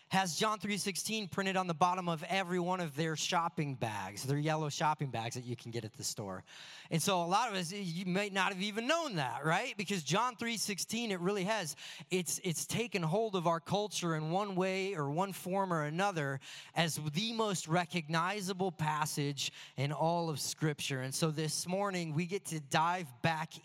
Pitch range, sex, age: 150-190 Hz, male, 30-49